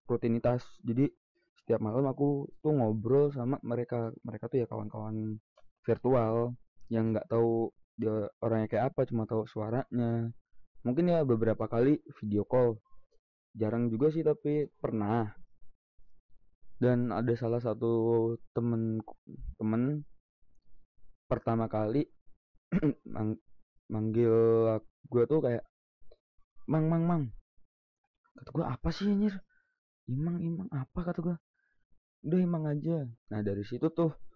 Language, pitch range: Indonesian, 115-145 Hz